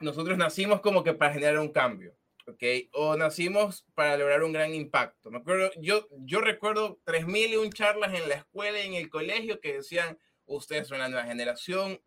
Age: 20-39